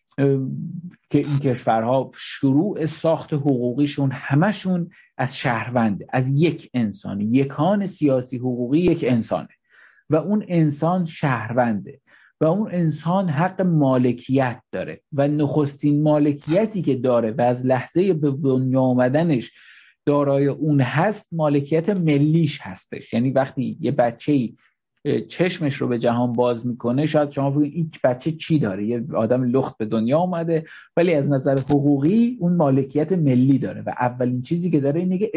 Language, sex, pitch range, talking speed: Persian, male, 125-155 Hz, 135 wpm